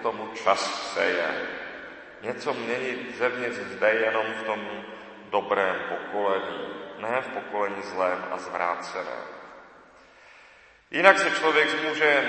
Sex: male